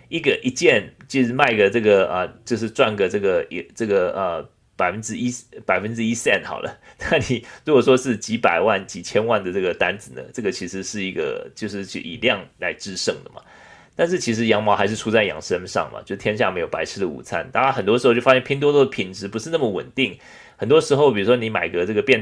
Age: 30-49